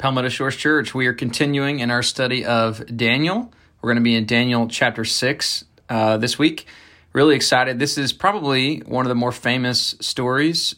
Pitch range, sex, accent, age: 115-140 Hz, male, American, 20-39